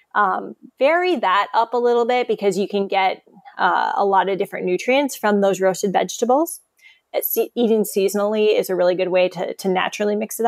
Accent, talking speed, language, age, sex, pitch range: American, 195 wpm, English, 20-39, female, 195-240 Hz